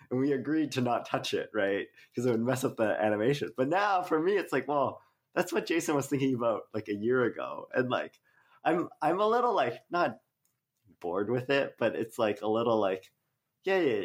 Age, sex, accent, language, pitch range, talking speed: 20-39, male, American, English, 100-140 Hz, 220 wpm